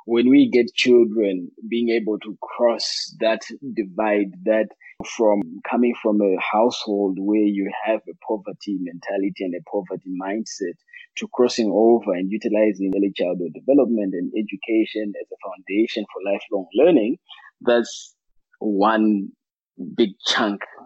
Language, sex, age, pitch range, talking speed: English, male, 20-39, 100-115 Hz, 130 wpm